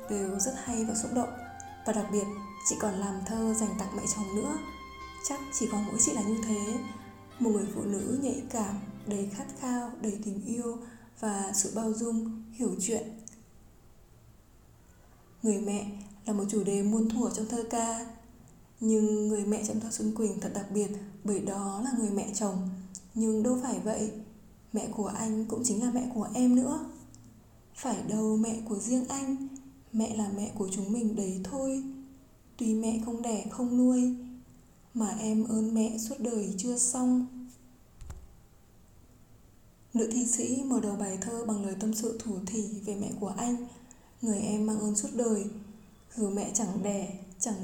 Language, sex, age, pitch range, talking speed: Vietnamese, female, 10-29, 210-240 Hz, 180 wpm